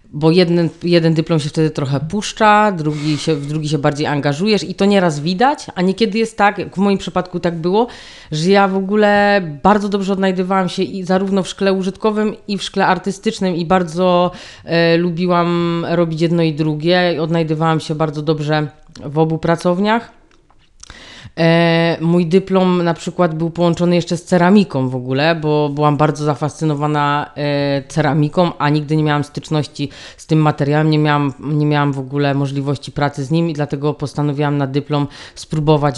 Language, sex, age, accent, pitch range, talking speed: Polish, female, 30-49, native, 145-175 Hz, 170 wpm